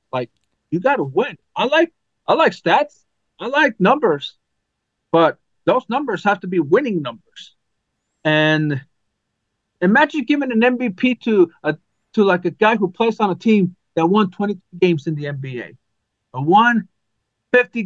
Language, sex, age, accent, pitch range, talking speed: English, male, 40-59, American, 125-205 Hz, 155 wpm